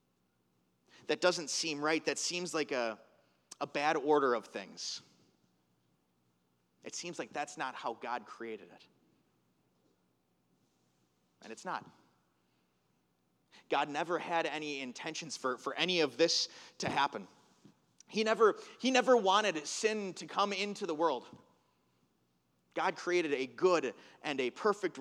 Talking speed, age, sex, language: 130 wpm, 30-49, male, English